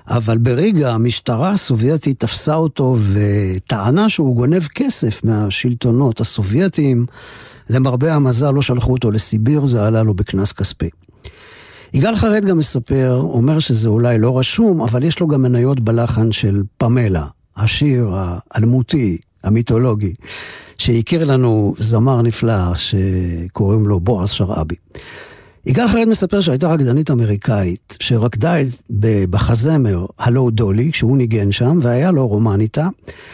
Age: 50-69